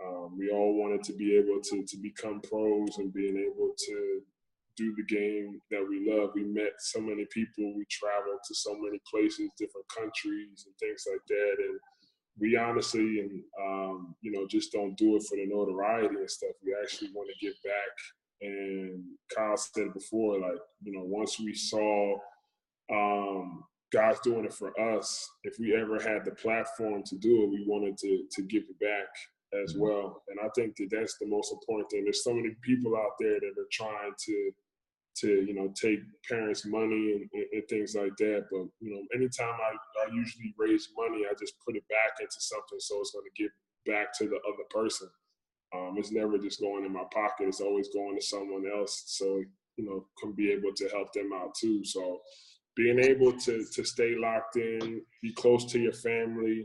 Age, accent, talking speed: 20-39, American, 200 wpm